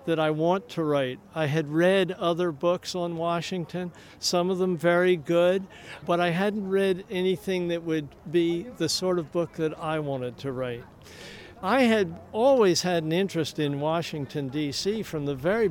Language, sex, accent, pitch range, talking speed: English, male, American, 160-200 Hz, 175 wpm